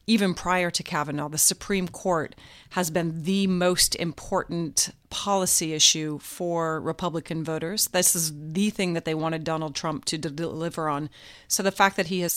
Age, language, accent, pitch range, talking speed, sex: 30-49, English, American, 160-190 Hz, 170 wpm, female